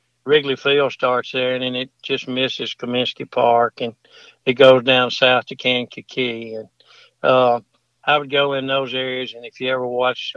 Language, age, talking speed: English, 60-79, 180 wpm